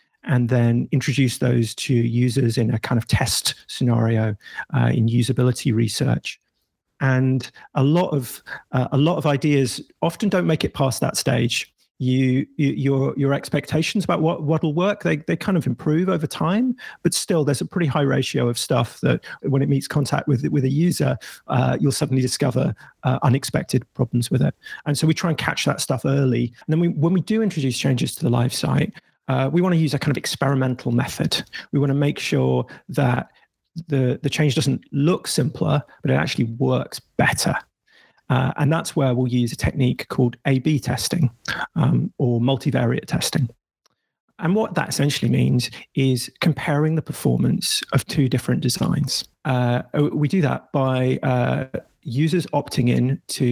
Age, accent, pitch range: 40-59, British, 125-155 Hz